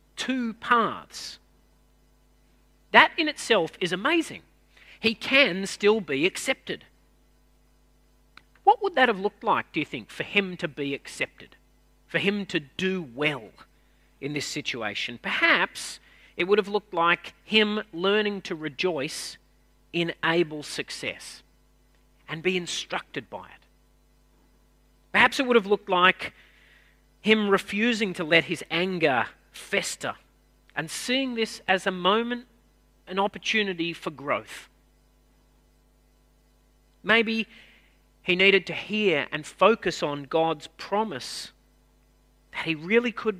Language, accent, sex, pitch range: English, Australian, male, 125-210 Hz